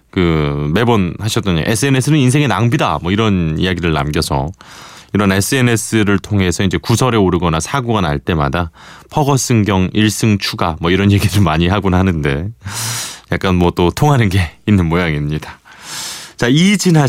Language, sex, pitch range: Korean, male, 85-120 Hz